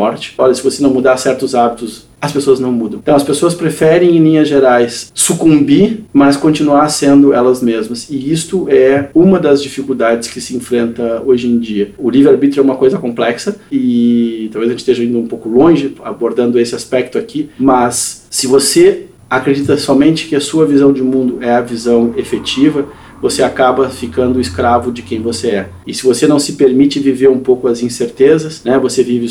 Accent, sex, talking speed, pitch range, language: Brazilian, male, 190 wpm, 120-140 Hz, Portuguese